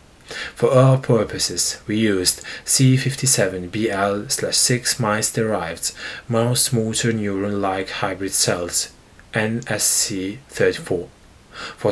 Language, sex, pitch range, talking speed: English, male, 100-125 Hz, 80 wpm